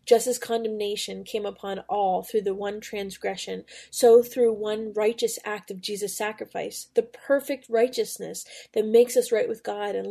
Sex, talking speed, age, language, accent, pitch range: female, 165 wpm, 20-39, English, American, 200-230 Hz